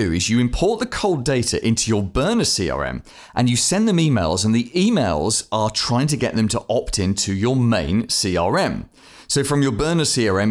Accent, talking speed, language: British, 195 wpm, English